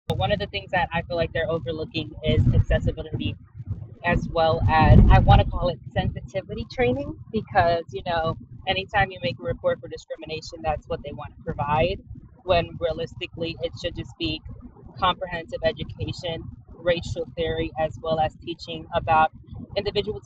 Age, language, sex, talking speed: 20-39, English, female, 160 wpm